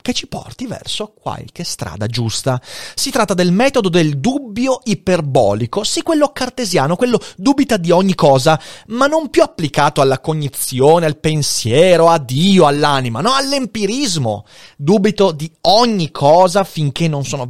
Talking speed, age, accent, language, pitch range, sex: 145 wpm, 30-49, native, Italian, 130-215 Hz, male